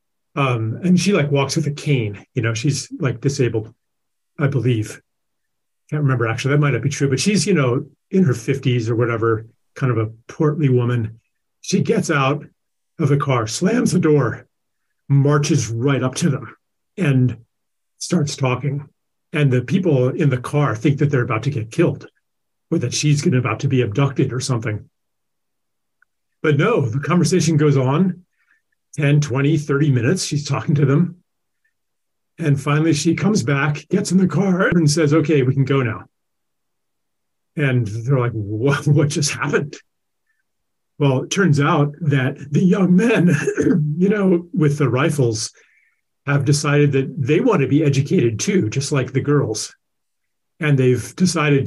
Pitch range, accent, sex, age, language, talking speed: 125-155 Hz, American, male, 40-59, English, 165 wpm